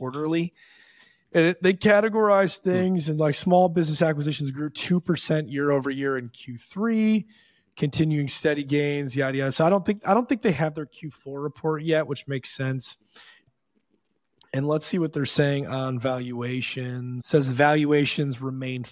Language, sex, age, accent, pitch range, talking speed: English, male, 20-39, American, 125-155 Hz, 160 wpm